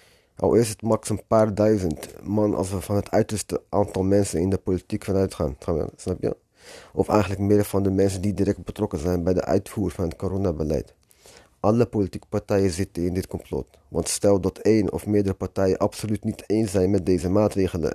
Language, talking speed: Dutch, 190 wpm